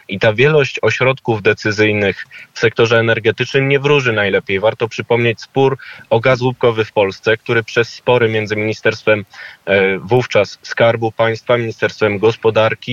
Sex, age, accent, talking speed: male, 20-39, native, 135 wpm